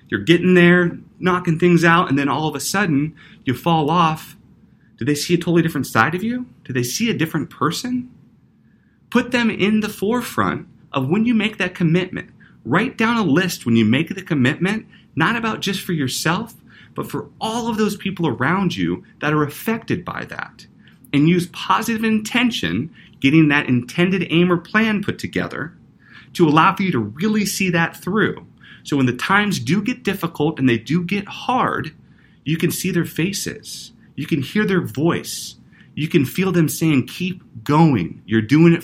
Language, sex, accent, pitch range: English, male, American, 130-185 Hz